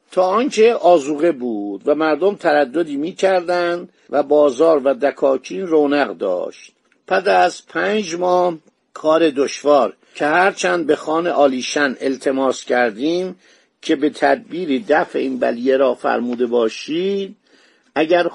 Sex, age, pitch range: male, 50-69, 140-200 Hz